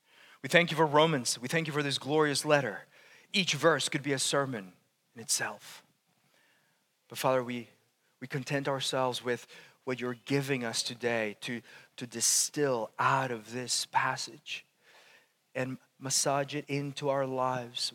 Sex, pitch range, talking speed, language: male, 120-155 Hz, 150 wpm, English